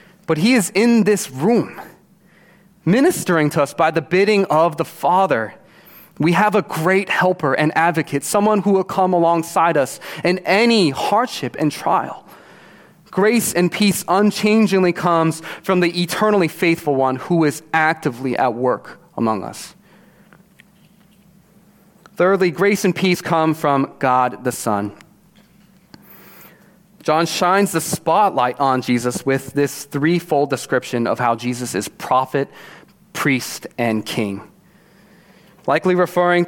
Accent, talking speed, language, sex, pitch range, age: American, 130 wpm, English, male, 140-190 Hz, 30-49